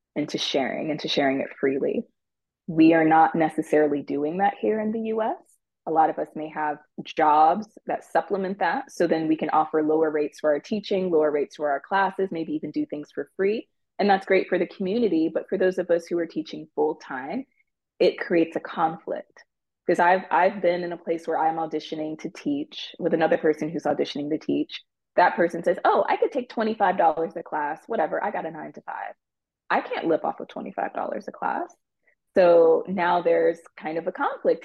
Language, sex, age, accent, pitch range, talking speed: English, female, 20-39, American, 155-200 Hz, 210 wpm